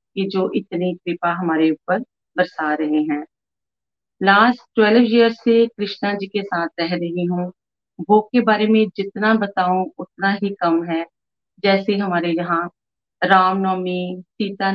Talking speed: 140 wpm